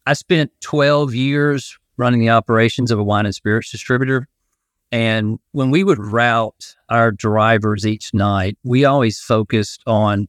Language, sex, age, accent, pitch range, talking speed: English, male, 40-59, American, 115-135 Hz, 150 wpm